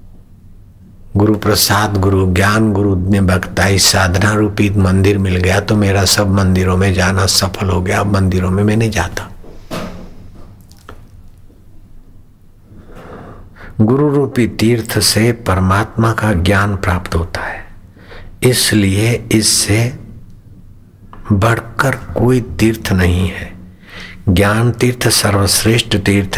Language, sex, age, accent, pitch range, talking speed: Hindi, male, 60-79, native, 95-110 Hz, 105 wpm